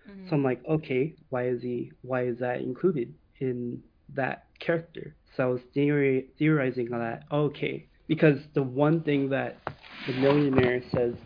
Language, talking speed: English, 155 wpm